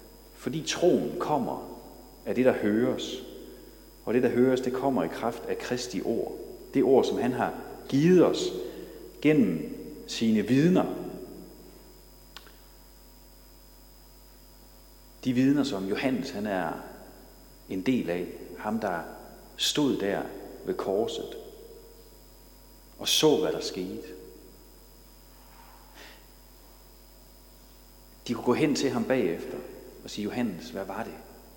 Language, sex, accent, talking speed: Danish, male, native, 115 wpm